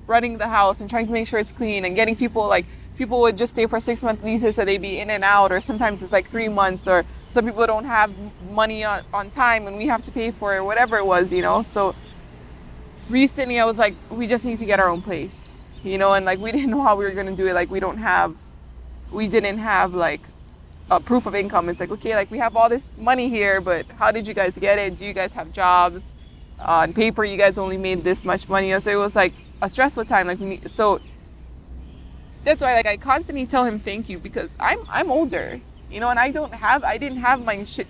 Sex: female